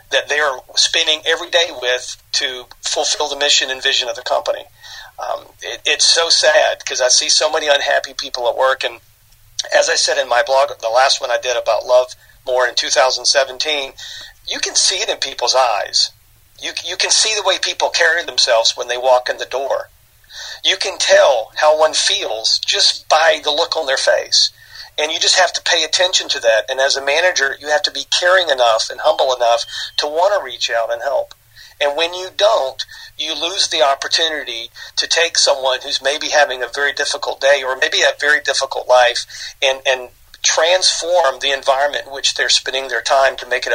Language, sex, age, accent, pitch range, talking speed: English, male, 50-69, American, 125-155 Hz, 205 wpm